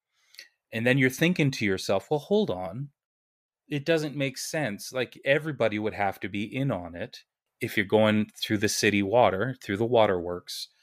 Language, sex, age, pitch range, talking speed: English, male, 30-49, 100-125 Hz, 175 wpm